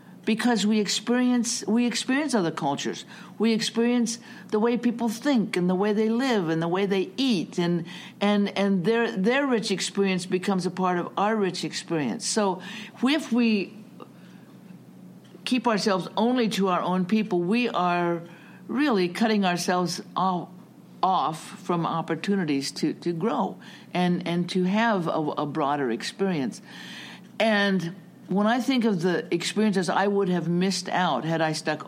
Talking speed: 150 wpm